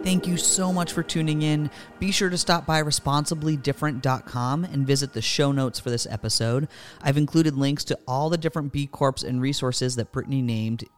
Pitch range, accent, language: 110-150 Hz, American, English